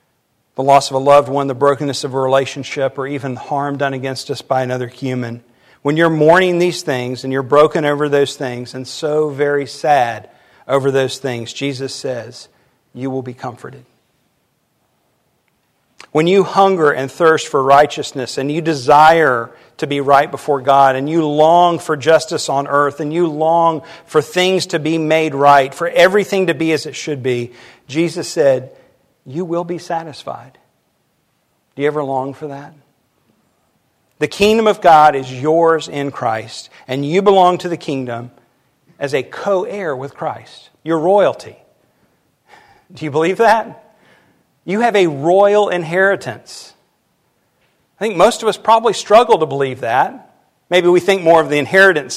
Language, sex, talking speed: English, male, 165 wpm